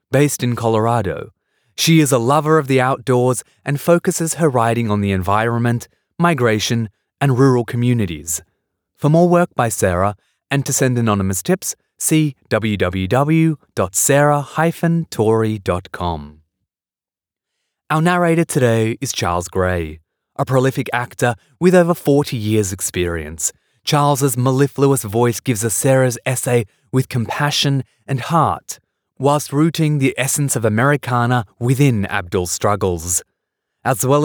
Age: 20-39